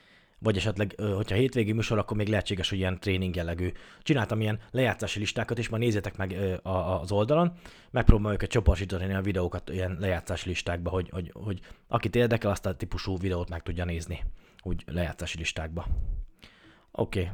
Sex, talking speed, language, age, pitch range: male, 165 wpm, Hungarian, 20-39, 95-120 Hz